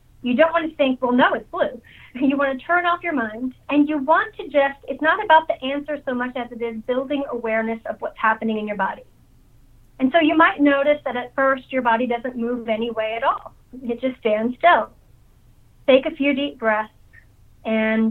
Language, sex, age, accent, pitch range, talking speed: English, female, 30-49, American, 220-275 Hz, 215 wpm